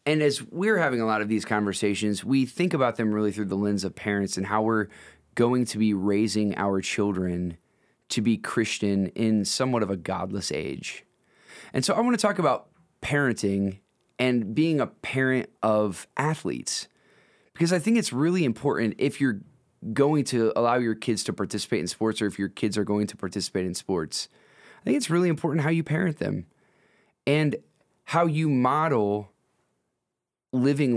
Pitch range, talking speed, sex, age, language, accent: 105-150 Hz, 180 wpm, male, 20-39, English, American